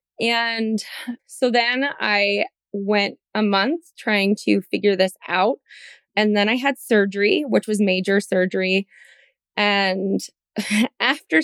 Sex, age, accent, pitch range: female, 20-39, American, 195-230 Hz